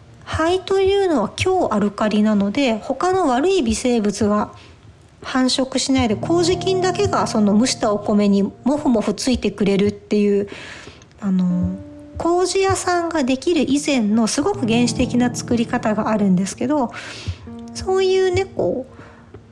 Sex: female